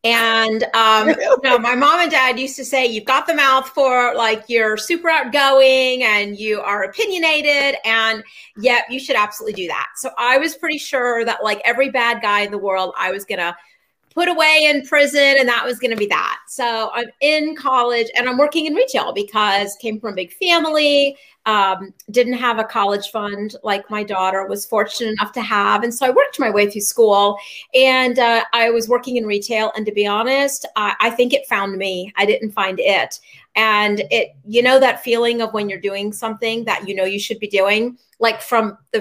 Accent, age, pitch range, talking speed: American, 30-49, 210-255 Hz, 210 wpm